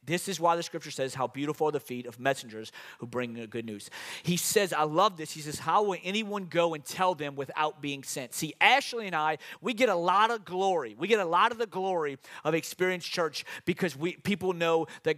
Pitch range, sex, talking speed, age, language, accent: 185-260 Hz, male, 235 wpm, 40-59, English, American